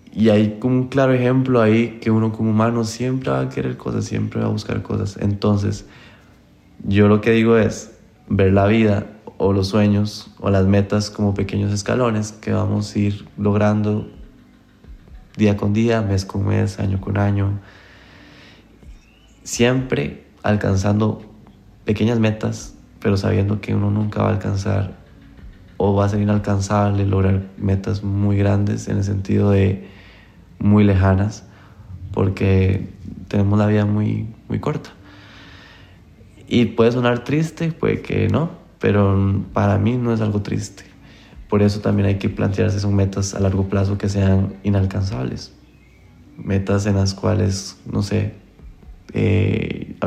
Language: Spanish